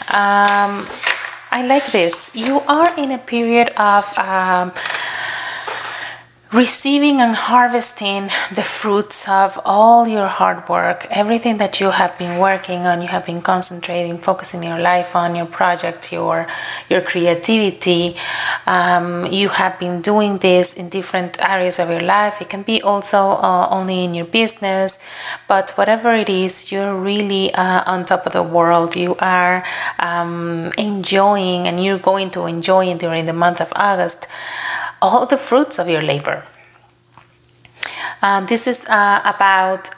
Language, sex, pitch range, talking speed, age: English, female, 180-220 Hz, 150 wpm, 30-49